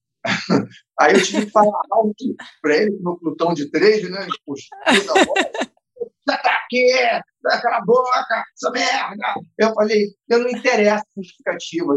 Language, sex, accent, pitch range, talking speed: Portuguese, male, Brazilian, 155-210 Hz, 145 wpm